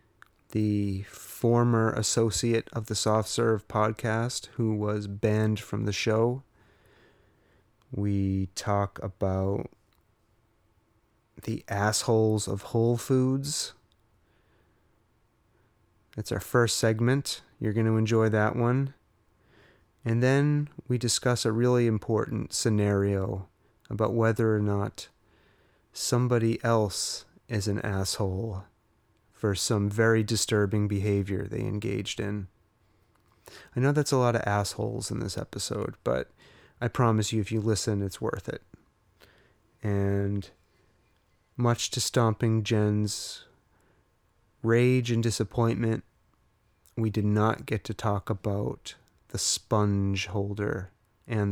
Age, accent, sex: 30-49, American, male